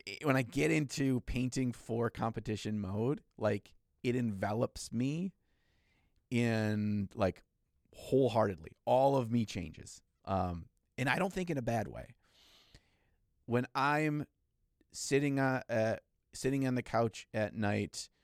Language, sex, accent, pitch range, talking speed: English, male, American, 95-115 Hz, 130 wpm